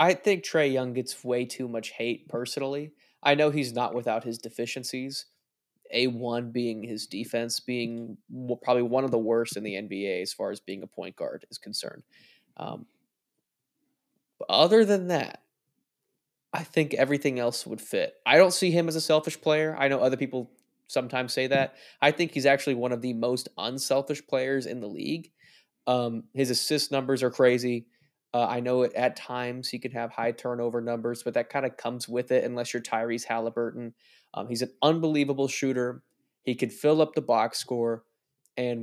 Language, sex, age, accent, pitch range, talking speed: English, male, 20-39, American, 120-140 Hz, 185 wpm